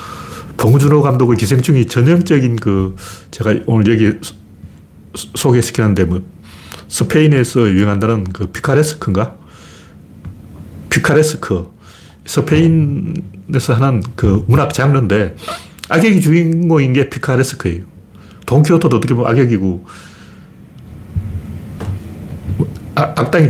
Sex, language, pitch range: male, Korean, 100-150 Hz